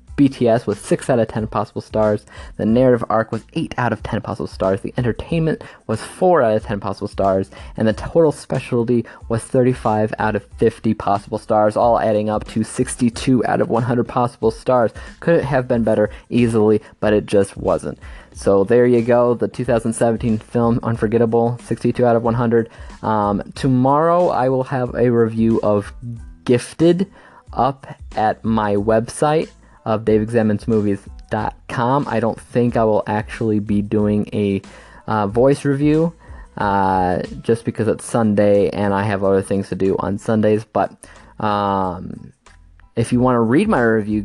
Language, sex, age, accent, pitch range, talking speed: English, male, 20-39, American, 105-125 Hz, 165 wpm